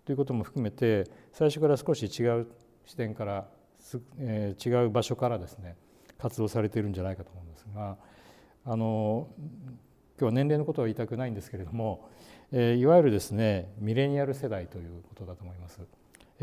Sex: male